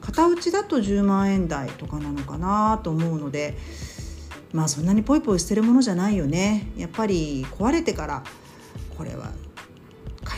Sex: female